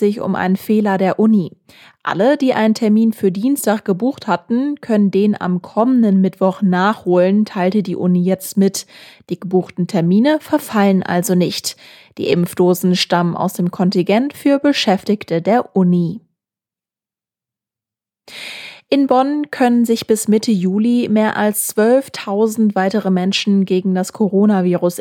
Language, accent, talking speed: German, German, 130 wpm